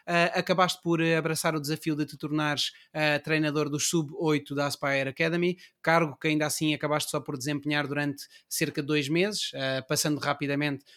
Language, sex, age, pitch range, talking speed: Portuguese, male, 20-39, 145-180 Hz, 160 wpm